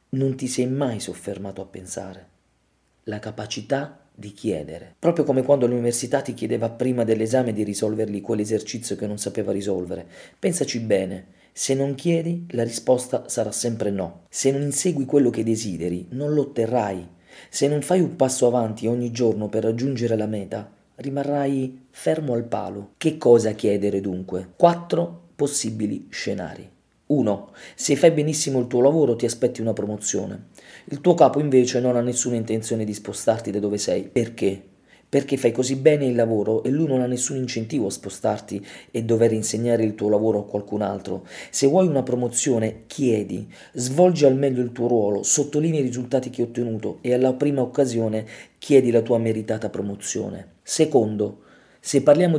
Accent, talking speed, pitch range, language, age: native, 165 wpm, 105-135 Hz, Italian, 40-59